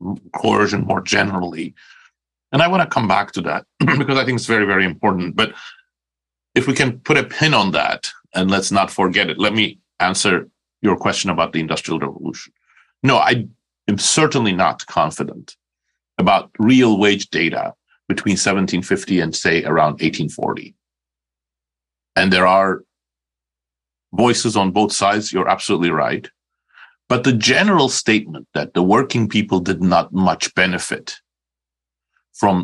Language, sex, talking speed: English, male, 145 wpm